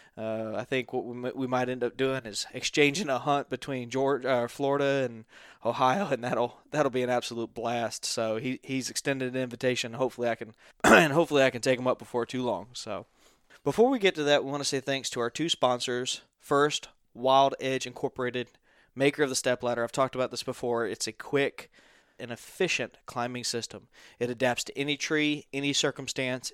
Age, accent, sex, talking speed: 20-39, American, male, 200 wpm